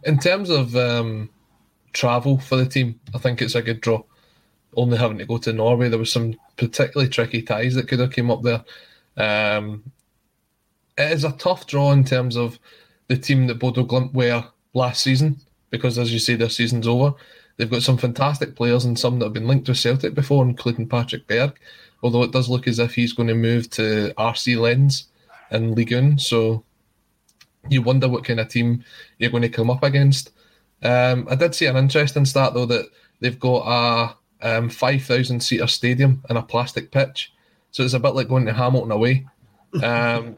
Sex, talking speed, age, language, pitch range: male, 195 wpm, 20-39, English, 120-135 Hz